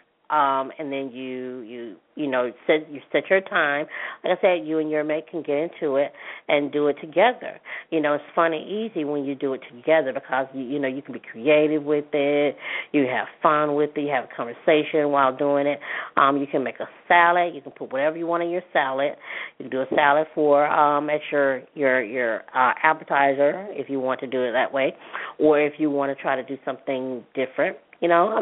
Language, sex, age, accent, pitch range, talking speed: English, female, 40-59, American, 135-160 Hz, 230 wpm